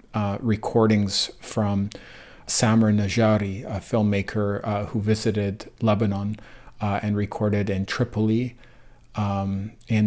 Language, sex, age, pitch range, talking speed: English, male, 40-59, 105-120 Hz, 105 wpm